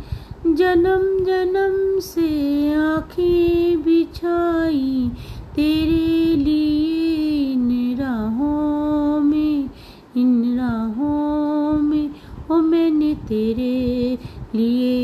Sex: female